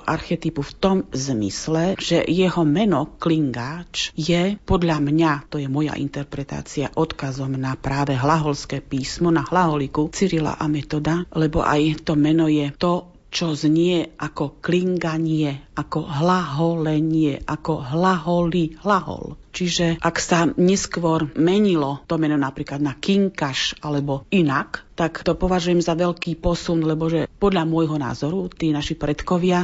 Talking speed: 130 wpm